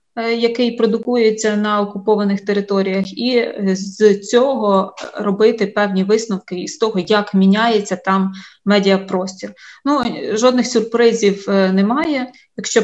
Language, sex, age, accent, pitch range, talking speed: Ukrainian, female, 20-39, native, 190-225 Hz, 105 wpm